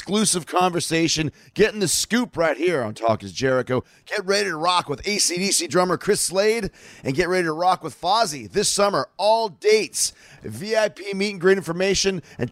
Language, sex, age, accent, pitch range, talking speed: English, male, 40-59, American, 145-190 Hz, 175 wpm